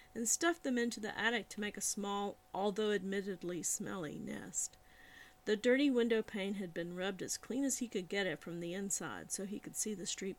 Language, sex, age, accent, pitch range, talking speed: English, female, 40-59, American, 185-235 Hz, 210 wpm